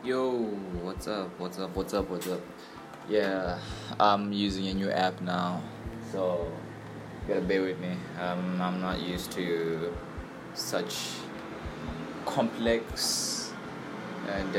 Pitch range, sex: 95-115 Hz, male